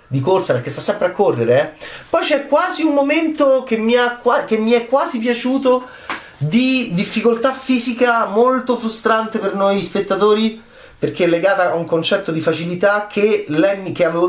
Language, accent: Italian, native